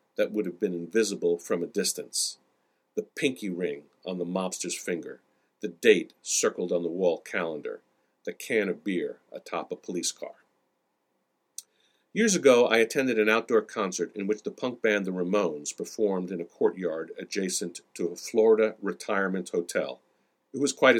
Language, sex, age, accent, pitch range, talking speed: English, male, 50-69, American, 100-135 Hz, 165 wpm